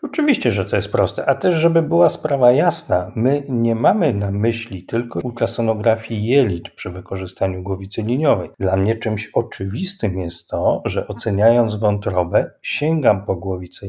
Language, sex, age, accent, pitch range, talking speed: Polish, male, 40-59, native, 100-125 Hz, 150 wpm